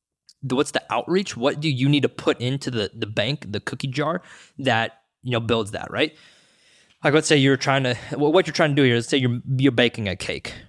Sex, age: male, 20-39